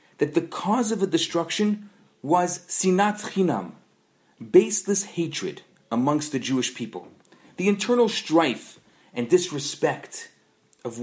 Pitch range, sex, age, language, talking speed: 155-200 Hz, male, 40-59, English, 115 wpm